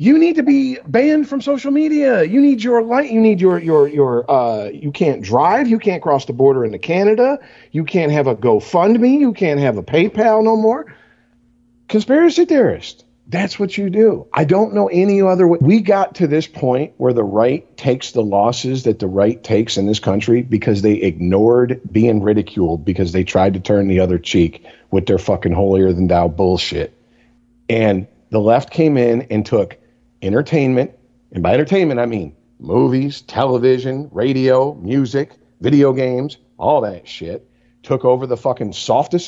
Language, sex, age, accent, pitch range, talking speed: English, male, 50-69, American, 115-185 Hz, 180 wpm